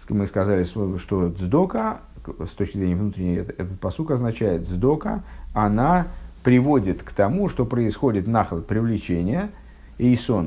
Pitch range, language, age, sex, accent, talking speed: 90-140 Hz, Russian, 50-69, male, native, 120 wpm